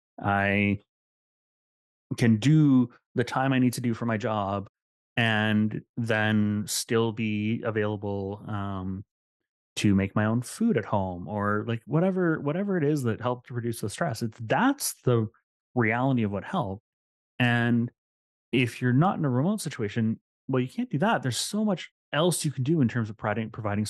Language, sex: English, male